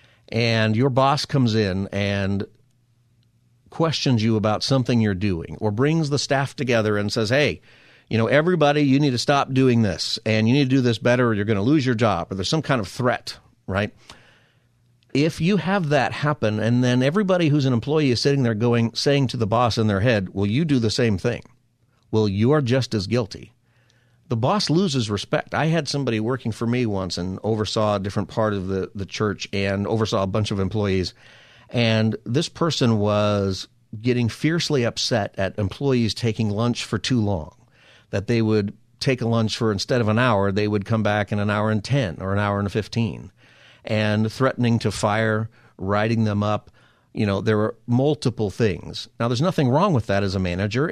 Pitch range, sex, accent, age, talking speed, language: 105-130 Hz, male, American, 50-69, 200 wpm, English